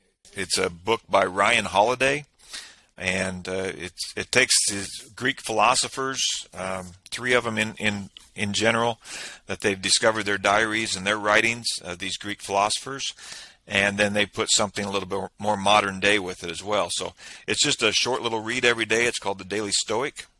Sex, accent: male, American